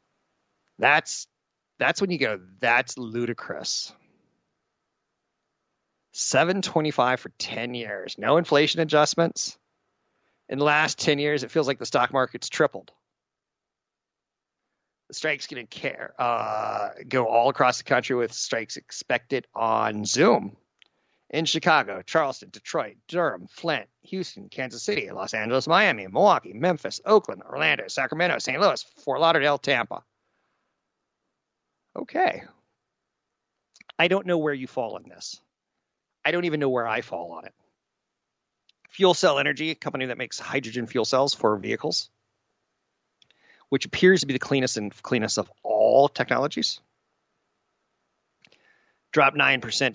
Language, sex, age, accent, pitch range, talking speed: English, male, 40-59, American, 120-160 Hz, 125 wpm